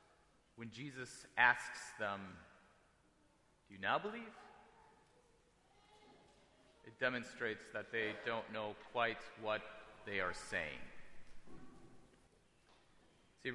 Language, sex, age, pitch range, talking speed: English, male, 30-49, 110-145 Hz, 90 wpm